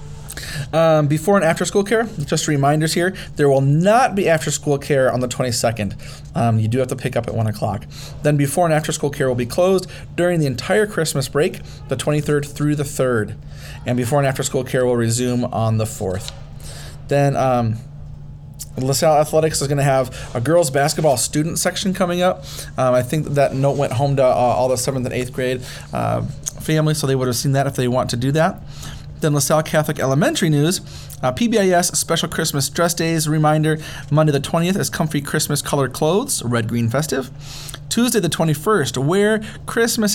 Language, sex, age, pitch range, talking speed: English, male, 30-49, 130-155 Hz, 195 wpm